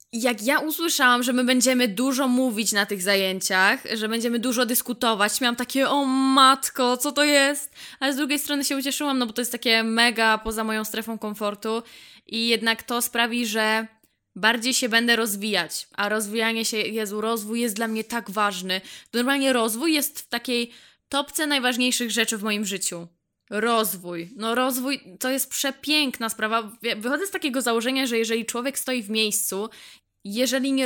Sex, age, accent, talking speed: female, 10-29, native, 170 wpm